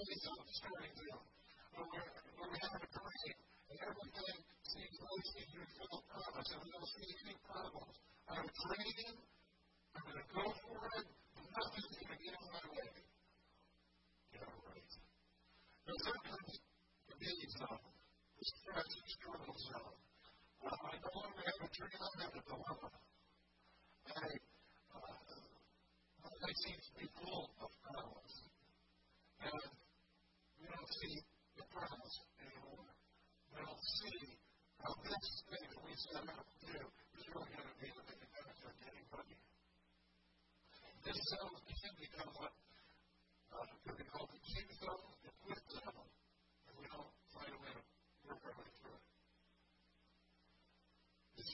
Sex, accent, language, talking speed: female, American, English, 105 wpm